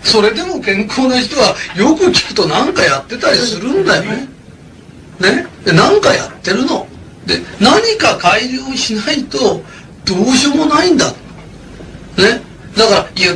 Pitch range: 205-290 Hz